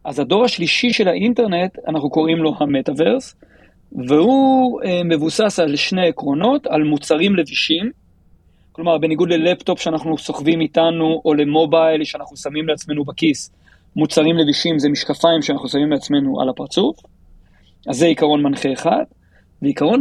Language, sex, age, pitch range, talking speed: Hebrew, male, 40-59, 145-180 Hz, 130 wpm